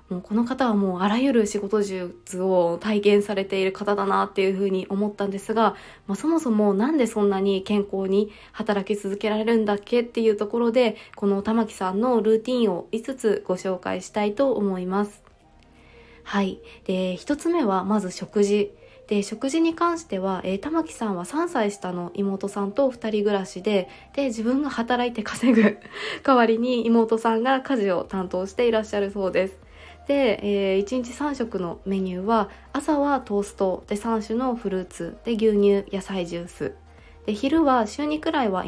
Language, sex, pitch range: Japanese, female, 190-240 Hz